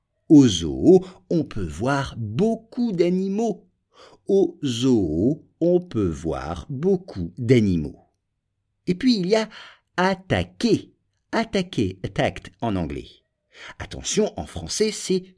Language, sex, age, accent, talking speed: English, male, 50-69, French, 110 wpm